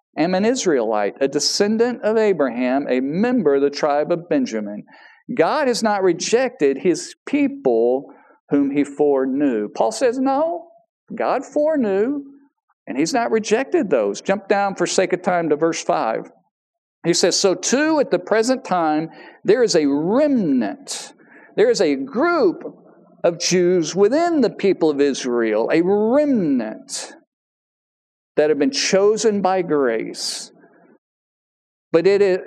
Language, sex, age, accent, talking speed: English, male, 50-69, American, 135 wpm